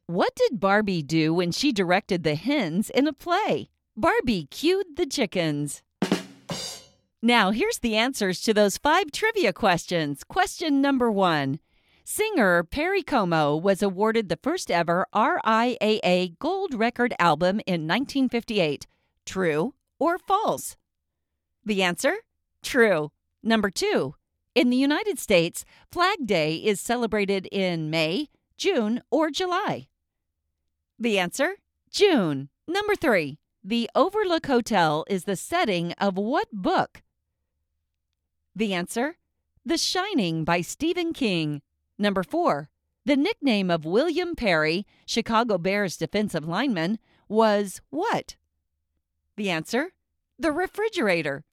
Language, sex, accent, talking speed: English, female, American, 120 wpm